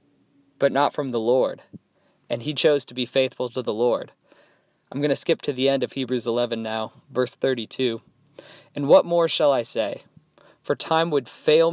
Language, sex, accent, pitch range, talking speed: English, male, American, 130-160 Hz, 190 wpm